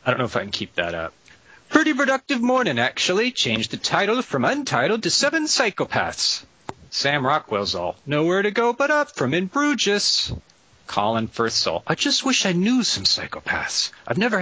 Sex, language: male, English